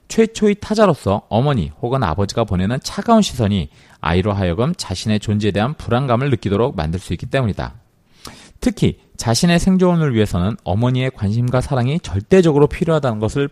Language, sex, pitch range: Korean, male, 95-140 Hz